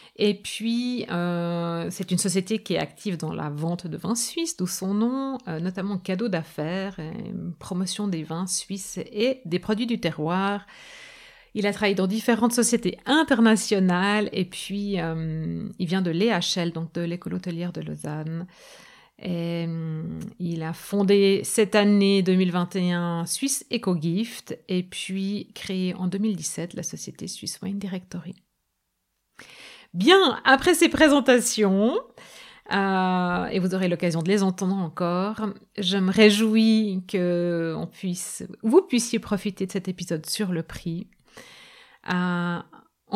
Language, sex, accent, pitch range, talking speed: French, female, French, 175-215 Hz, 140 wpm